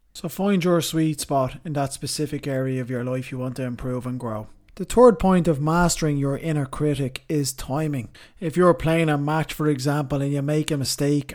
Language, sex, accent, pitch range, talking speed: English, male, Irish, 130-150 Hz, 210 wpm